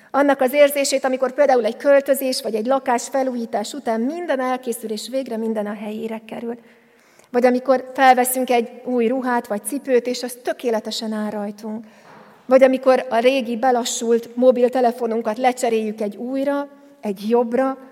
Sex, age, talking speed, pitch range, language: female, 40-59, 145 wpm, 225-255 Hz, Hungarian